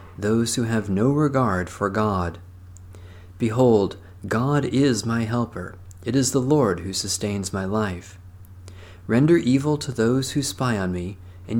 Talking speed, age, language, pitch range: 150 wpm, 40-59, English, 90-125 Hz